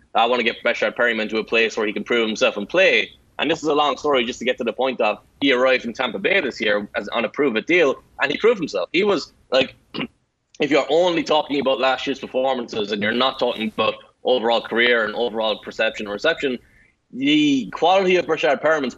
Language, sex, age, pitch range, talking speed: English, male, 20-39, 120-150 Hz, 230 wpm